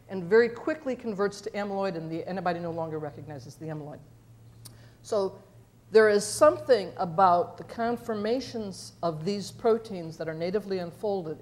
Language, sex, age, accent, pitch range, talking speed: English, female, 60-79, American, 160-230 Hz, 145 wpm